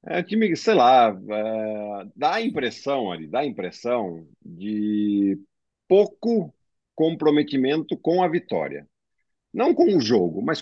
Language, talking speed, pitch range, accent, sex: Portuguese, 130 wpm, 110-165 Hz, Brazilian, male